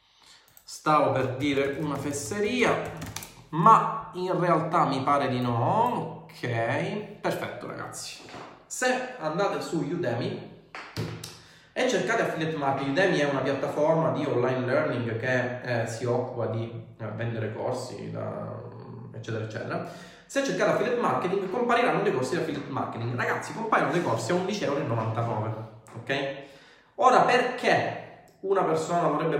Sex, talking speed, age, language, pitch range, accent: male, 125 wpm, 30-49, Italian, 120-180 Hz, native